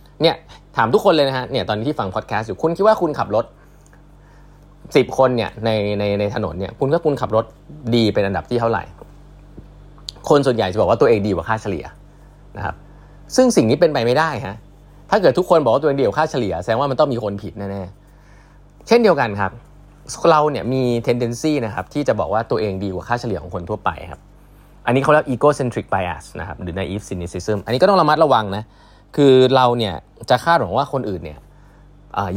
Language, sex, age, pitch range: Thai, male, 20-39, 100-145 Hz